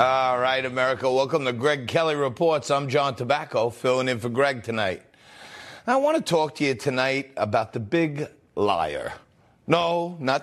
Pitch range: 135-210 Hz